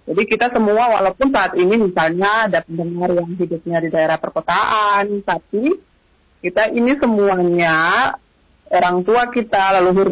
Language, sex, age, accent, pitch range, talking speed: Indonesian, female, 30-49, native, 180-225 Hz, 130 wpm